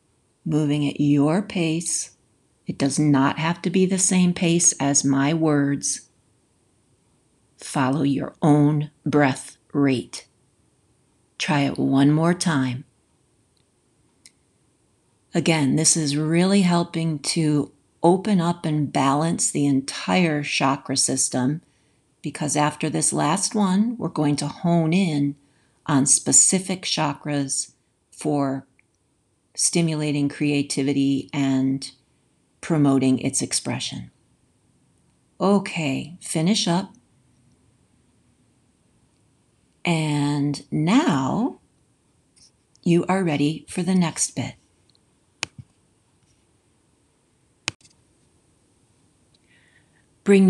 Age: 50-69